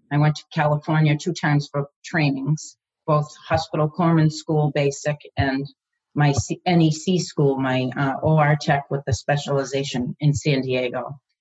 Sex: female